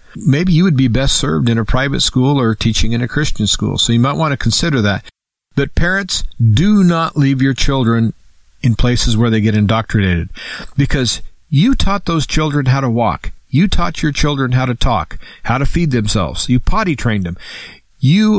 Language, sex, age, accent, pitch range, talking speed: English, male, 50-69, American, 110-145 Hz, 195 wpm